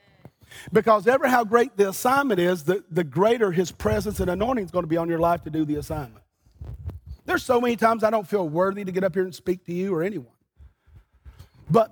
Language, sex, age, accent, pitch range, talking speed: English, male, 40-59, American, 180-235 Hz, 220 wpm